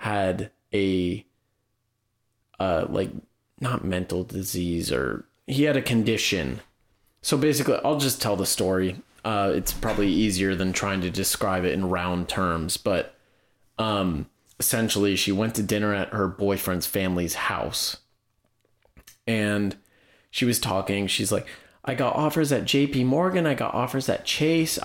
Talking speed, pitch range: 145 wpm, 95-115 Hz